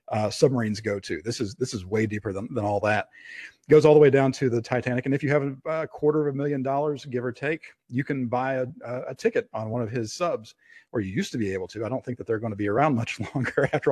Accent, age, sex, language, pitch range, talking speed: American, 40-59, male, English, 115-140 Hz, 280 wpm